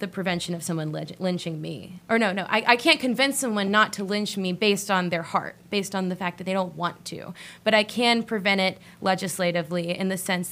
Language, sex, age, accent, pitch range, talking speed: English, female, 20-39, American, 180-210 Hz, 230 wpm